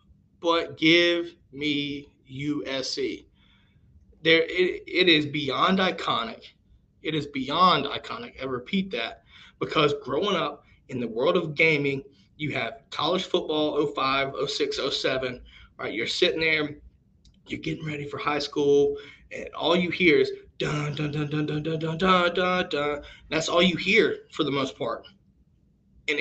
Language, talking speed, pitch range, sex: English, 150 wpm, 145-185 Hz, male